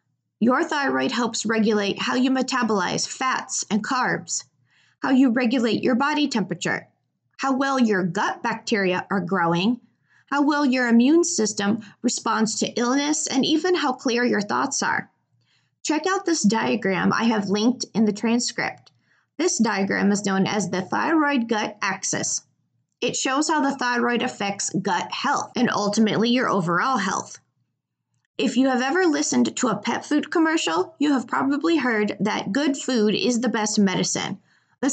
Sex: female